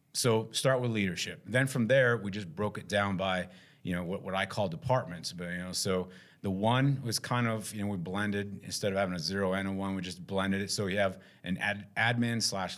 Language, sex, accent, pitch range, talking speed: English, male, American, 95-110 Hz, 245 wpm